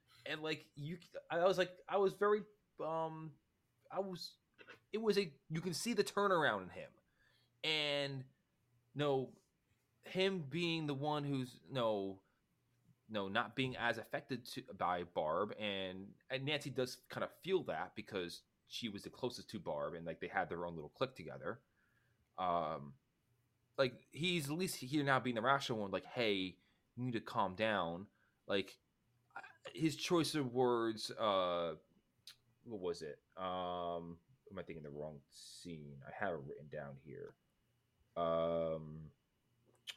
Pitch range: 95-160 Hz